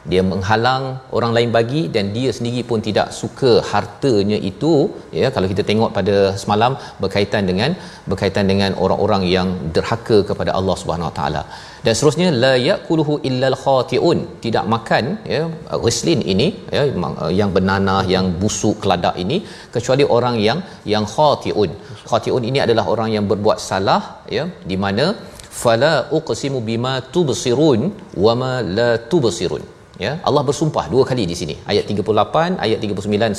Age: 40-59